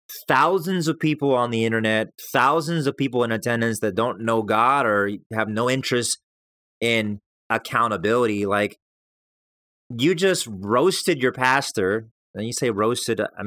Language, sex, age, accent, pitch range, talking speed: English, male, 30-49, American, 110-140 Hz, 145 wpm